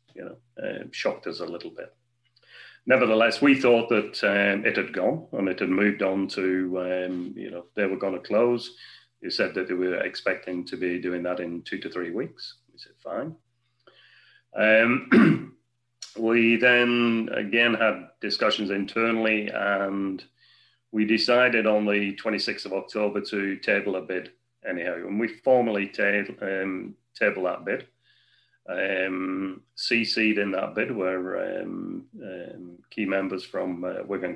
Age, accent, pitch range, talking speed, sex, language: 30-49, British, 95-120 Hz, 155 wpm, male, English